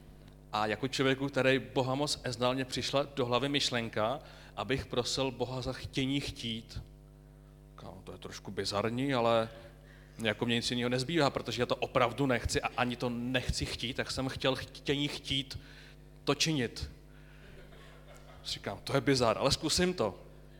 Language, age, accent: Czech, 30-49, native